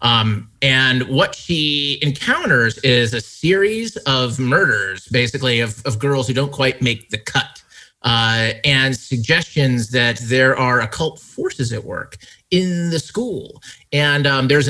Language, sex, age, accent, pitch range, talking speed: English, male, 30-49, American, 120-165 Hz, 145 wpm